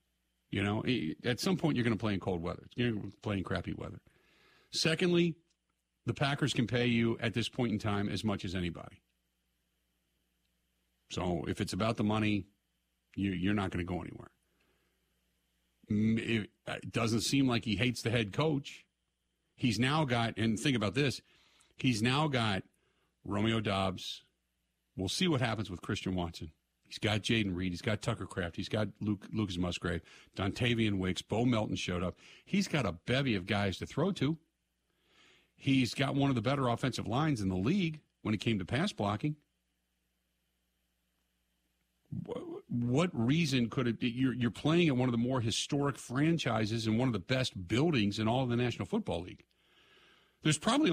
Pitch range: 90-130 Hz